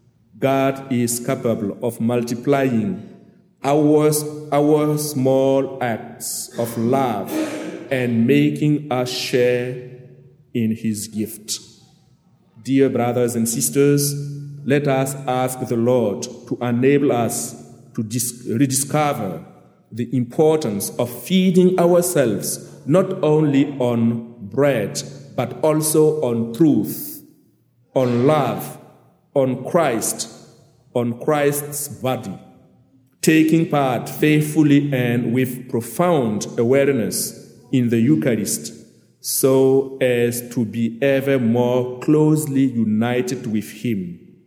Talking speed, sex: 95 wpm, male